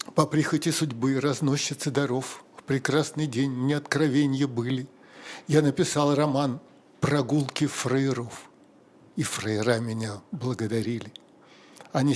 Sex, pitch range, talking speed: male, 130-155 Hz, 105 wpm